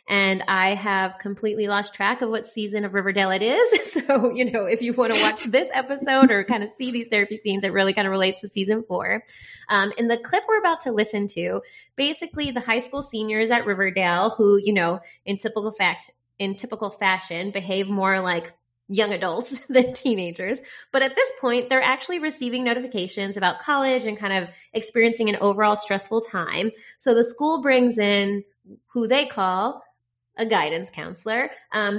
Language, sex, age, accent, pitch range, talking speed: English, female, 20-39, American, 190-250 Hz, 185 wpm